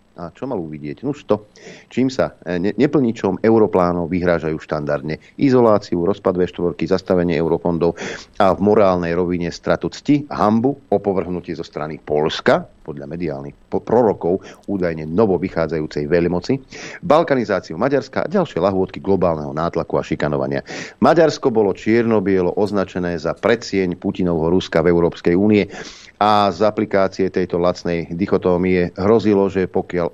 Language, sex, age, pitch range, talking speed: Slovak, male, 50-69, 85-105 Hz, 125 wpm